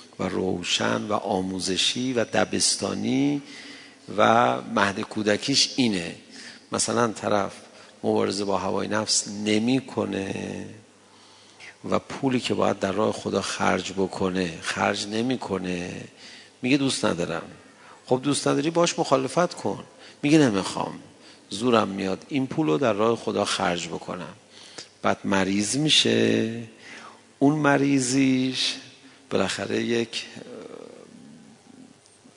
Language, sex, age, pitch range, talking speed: Persian, male, 50-69, 95-135 Hz, 100 wpm